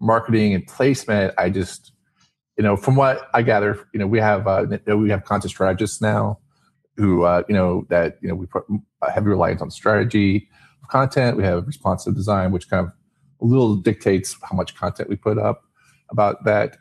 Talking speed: 195 wpm